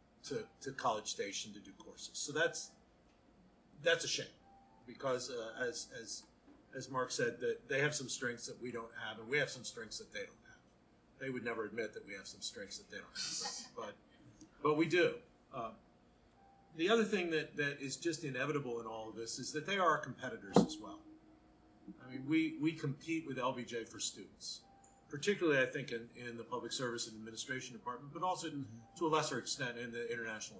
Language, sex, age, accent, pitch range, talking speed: English, male, 50-69, American, 120-150 Hz, 205 wpm